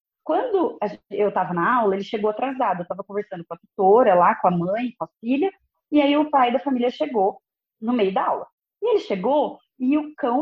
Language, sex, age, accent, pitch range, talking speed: Portuguese, female, 20-39, Brazilian, 195-275 Hz, 220 wpm